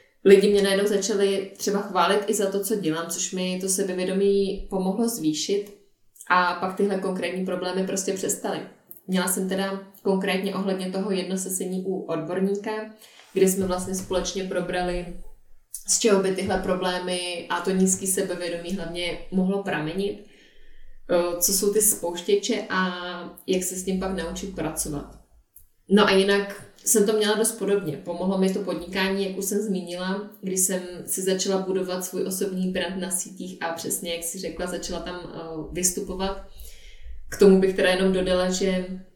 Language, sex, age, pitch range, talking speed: Czech, female, 20-39, 180-200 Hz, 160 wpm